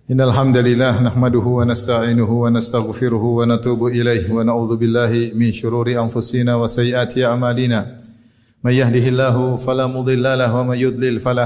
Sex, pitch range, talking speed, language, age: male, 115-130 Hz, 145 wpm, Indonesian, 30-49